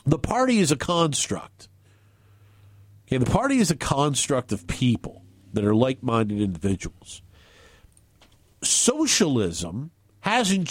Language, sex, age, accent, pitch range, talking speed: English, male, 50-69, American, 105-150 Hz, 100 wpm